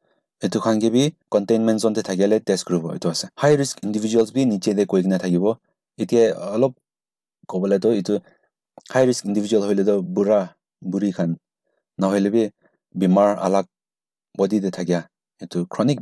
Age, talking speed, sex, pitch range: 30-49, 85 wpm, male, 95-115 Hz